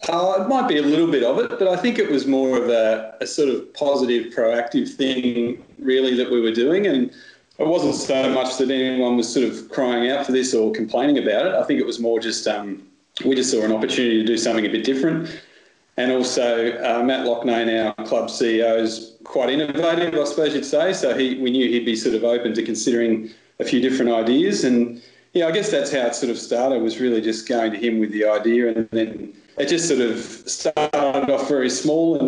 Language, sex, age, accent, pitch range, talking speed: English, male, 40-59, Australian, 115-130 Hz, 230 wpm